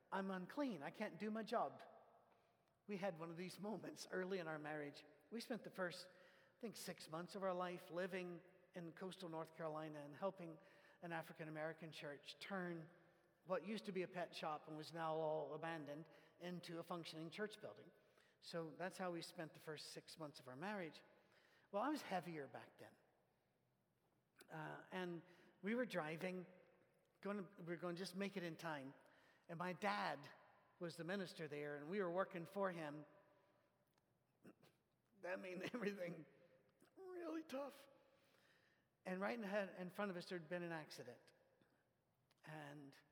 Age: 50-69